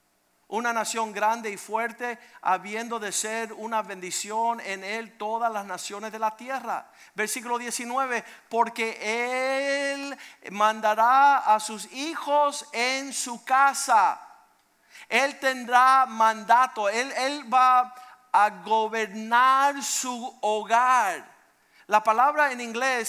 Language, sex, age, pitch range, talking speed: Spanish, male, 50-69, 220-255 Hz, 110 wpm